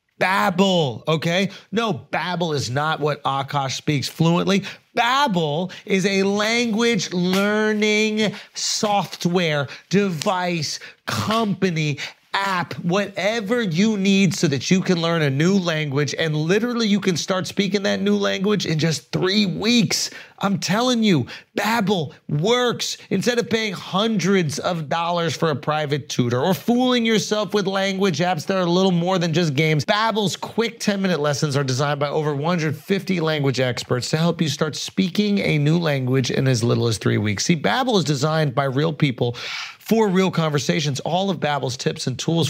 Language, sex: English, male